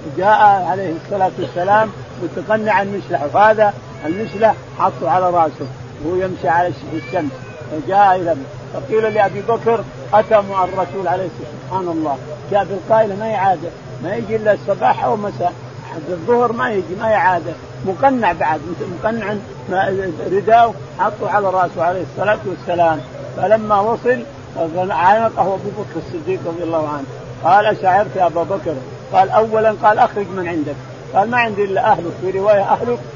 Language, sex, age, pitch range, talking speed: Arabic, male, 50-69, 160-210 Hz, 145 wpm